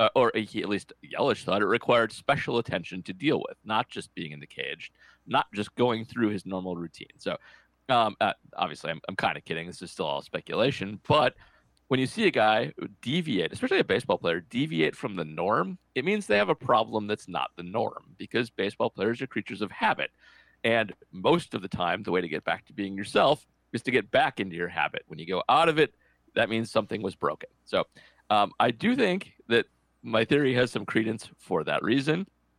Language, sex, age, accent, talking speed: English, male, 40-59, American, 220 wpm